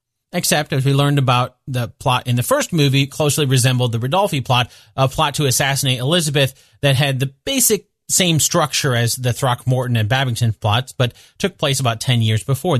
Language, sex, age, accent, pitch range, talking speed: English, male, 30-49, American, 125-160 Hz, 185 wpm